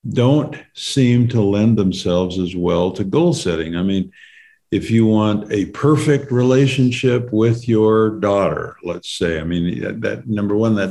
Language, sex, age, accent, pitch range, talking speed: English, male, 50-69, American, 95-120 Hz, 160 wpm